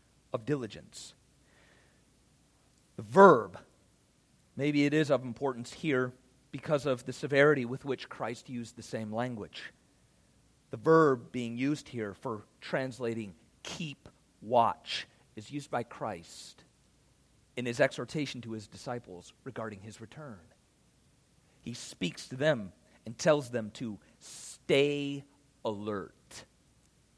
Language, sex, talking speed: English, male, 115 wpm